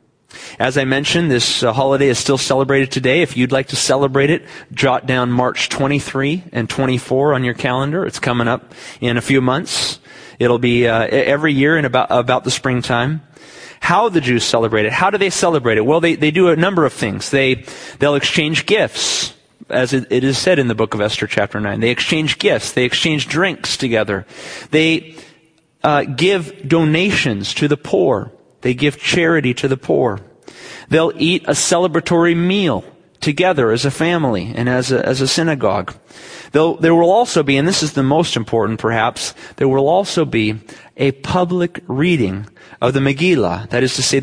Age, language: 30-49, English